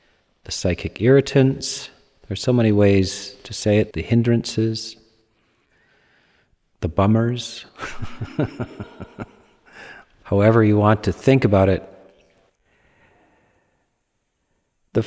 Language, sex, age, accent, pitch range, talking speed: English, male, 40-59, American, 95-115 Hz, 90 wpm